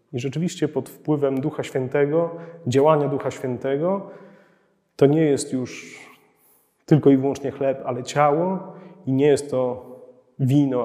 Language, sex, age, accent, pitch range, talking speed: Polish, male, 30-49, native, 135-165 Hz, 135 wpm